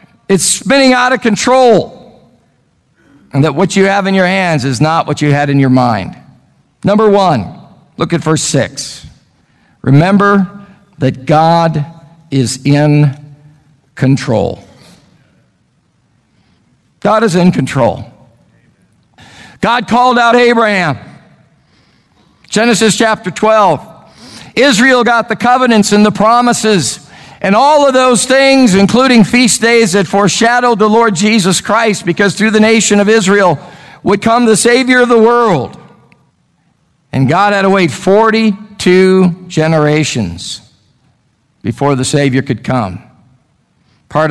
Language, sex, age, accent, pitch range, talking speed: English, male, 50-69, American, 150-220 Hz, 125 wpm